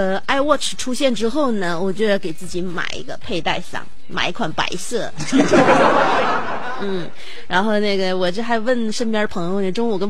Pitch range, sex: 170-225 Hz, female